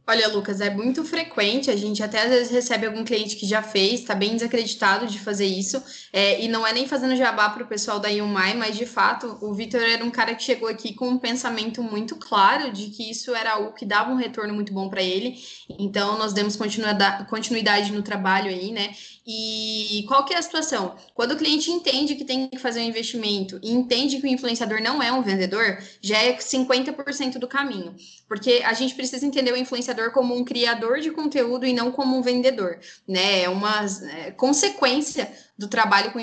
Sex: female